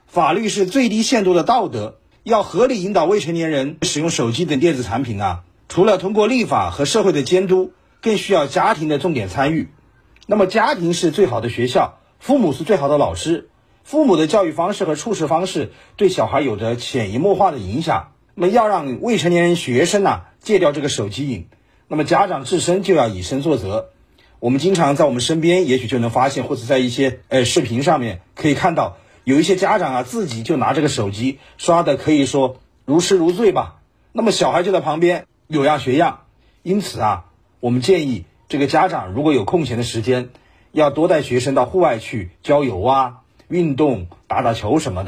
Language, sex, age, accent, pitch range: Chinese, male, 40-59, native, 120-180 Hz